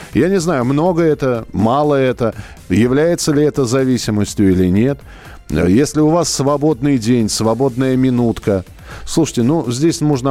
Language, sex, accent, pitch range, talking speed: Russian, male, native, 105-150 Hz, 140 wpm